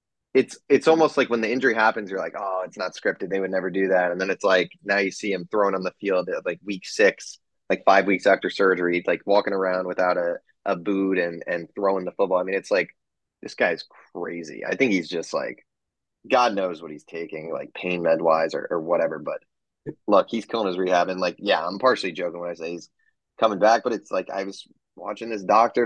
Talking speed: 235 wpm